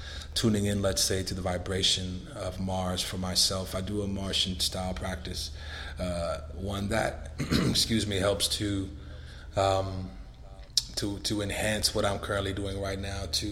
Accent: American